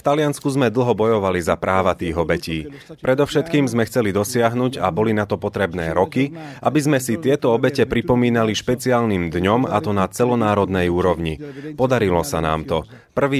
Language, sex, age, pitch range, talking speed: Slovak, male, 30-49, 100-125 Hz, 165 wpm